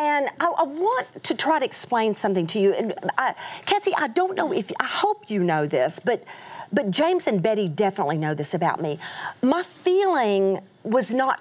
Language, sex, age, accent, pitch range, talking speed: English, female, 40-59, American, 190-280 Hz, 195 wpm